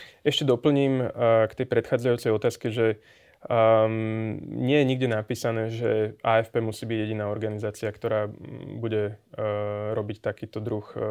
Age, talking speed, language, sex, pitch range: 20-39, 120 wpm, Slovak, male, 110-130 Hz